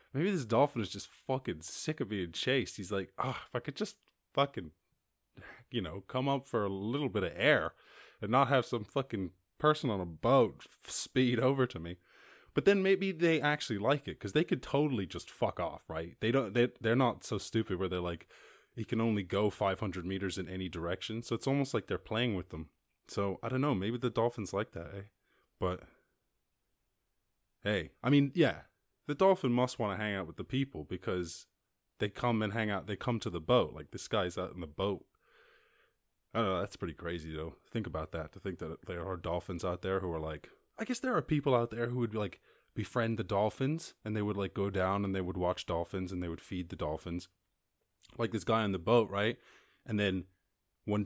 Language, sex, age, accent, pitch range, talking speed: English, male, 20-39, American, 95-130 Hz, 220 wpm